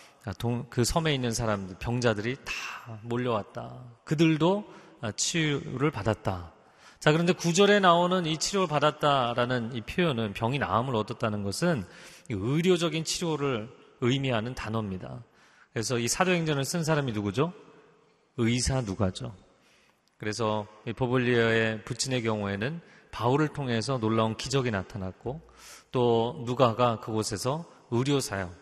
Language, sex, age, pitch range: Korean, male, 30-49, 110-150 Hz